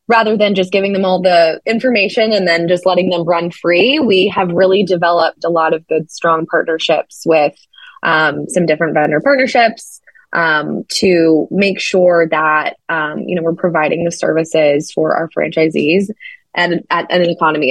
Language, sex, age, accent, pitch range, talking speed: English, female, 20-39, American, 160-195 Hz, 175 wpm